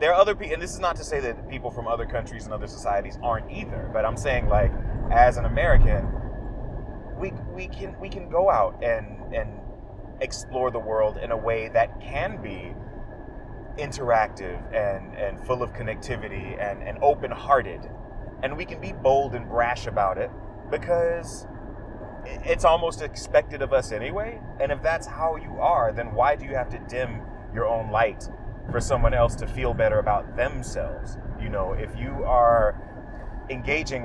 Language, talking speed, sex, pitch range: English, 175 wpm, male, 105-125 Hz